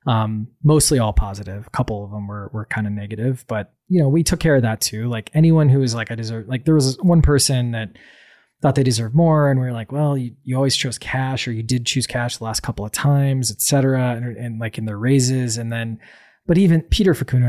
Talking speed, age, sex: 245 wpm, 20-39, male